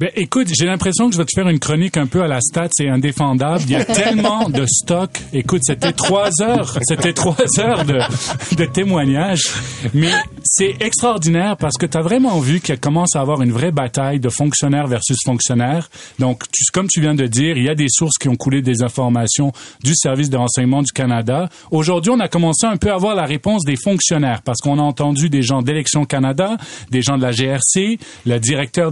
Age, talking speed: 40-59, 215 wpm